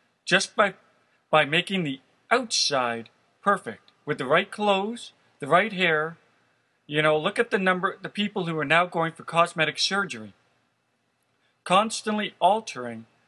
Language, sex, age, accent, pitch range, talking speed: English, male, 50-69, American, 155-195 Hz, 140 wpm